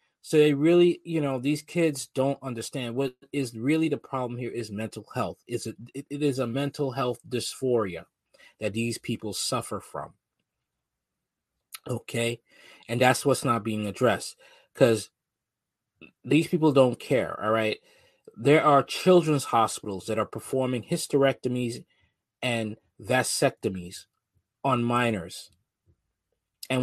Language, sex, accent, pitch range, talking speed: English, male, American, 110-140 Hz, 130 wpm